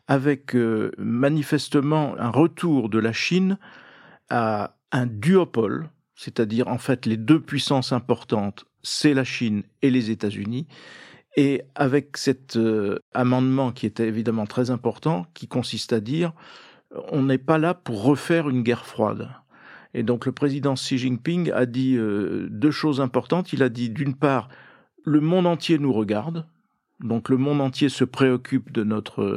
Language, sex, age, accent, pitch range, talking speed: French, male, 50-69, French, 120-155 Hz, 155 wpm